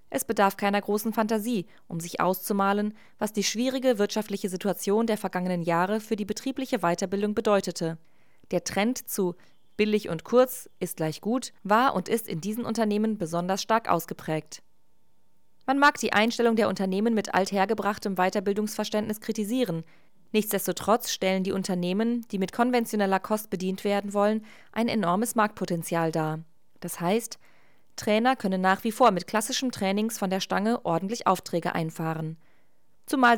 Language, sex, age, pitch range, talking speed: German, female, 20-39, 185-225 Hz, 145 wpm